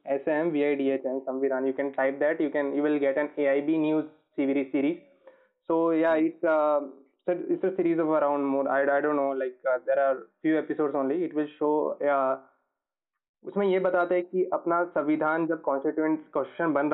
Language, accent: Hindi, native